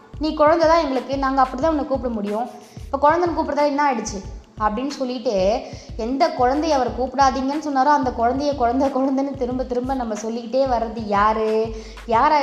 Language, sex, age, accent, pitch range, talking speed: Tamil, female, 20-39, native, 215-260 Hz, 160 wpm